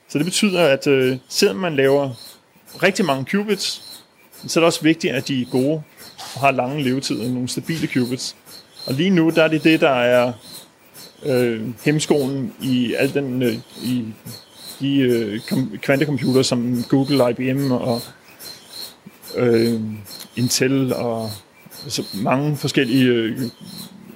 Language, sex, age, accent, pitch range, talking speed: Danish, male, 30-49, native, 125-145 Hz, 140 wpm